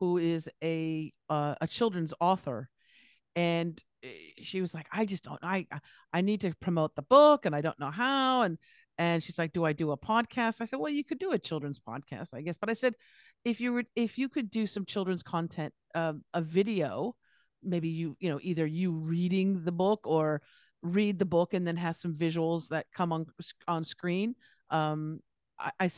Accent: American